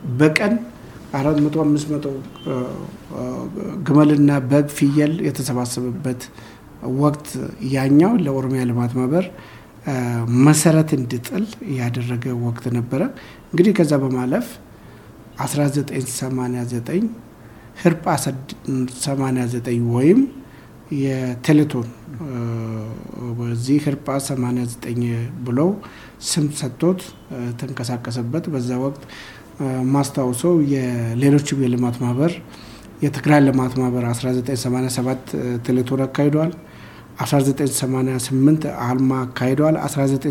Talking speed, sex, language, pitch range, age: 70 wpm, male, Amharic, 120-145 Hz, 60-79